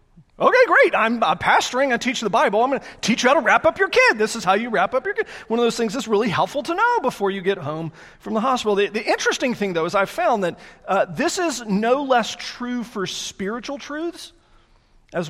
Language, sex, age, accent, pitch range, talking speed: English, male, 40-59, American, 160-240 Hz, 245 wpm